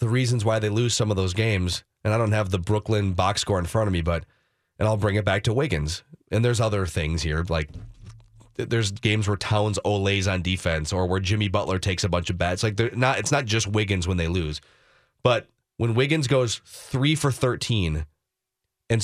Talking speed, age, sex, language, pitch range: 220 wpm, 30-49, male, English, 100-135 Hz